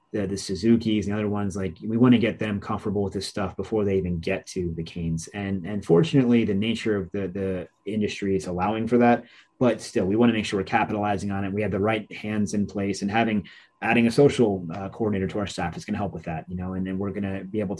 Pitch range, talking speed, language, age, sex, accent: 95-110 Hz, 265 wpm, English, 30-49, male, American